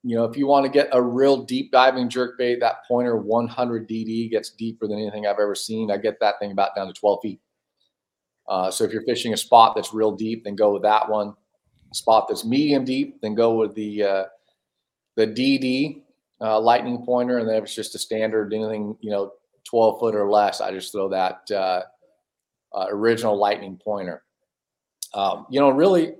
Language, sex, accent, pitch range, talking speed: English, male, American, 105-125 Hz, 205 wpm